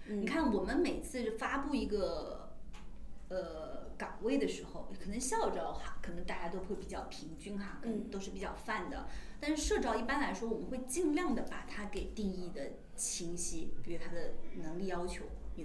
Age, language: 20-39, Chinese